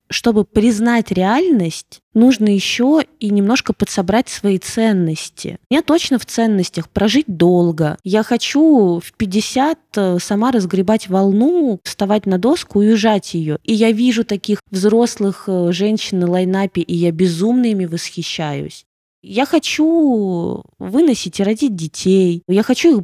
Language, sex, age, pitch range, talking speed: Russian, female, 20-39, 180-240 Hz, 130 wpm